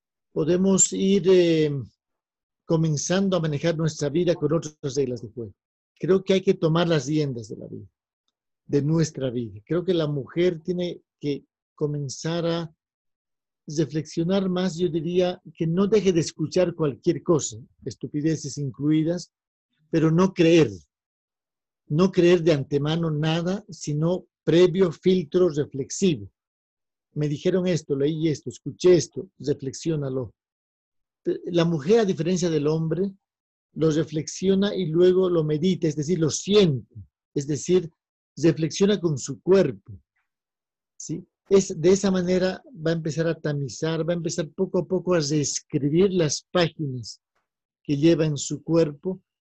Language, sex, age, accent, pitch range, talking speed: Spanish, male, 50-69, Mexican, 145-180 Hz, 140 wpm